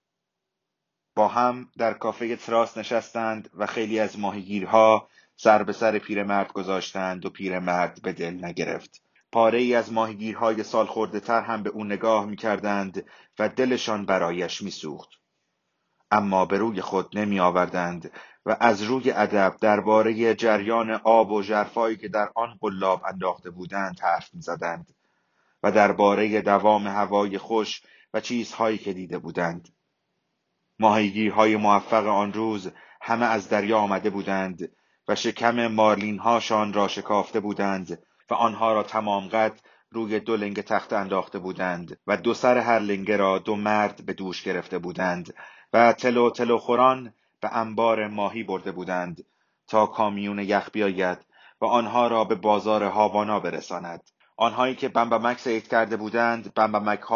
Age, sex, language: 30-49, male, Persian